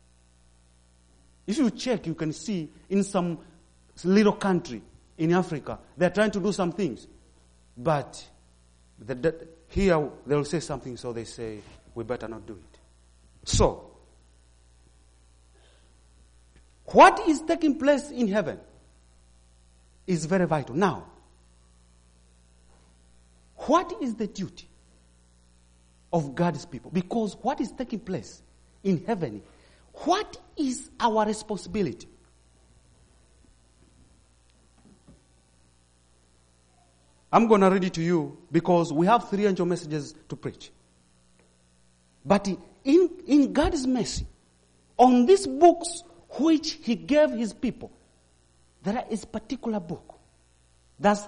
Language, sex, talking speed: English, male, 110 wpm